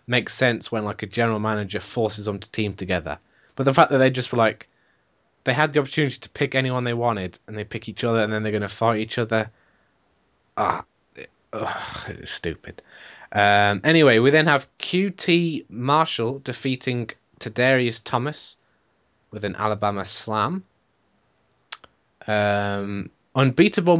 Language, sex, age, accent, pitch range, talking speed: English, male, 20-39, British, 100-130 Hz, 155 wpm